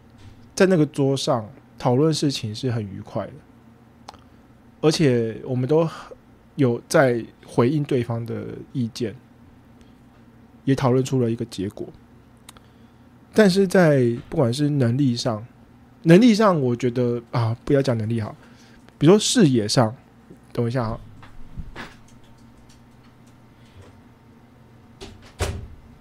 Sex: male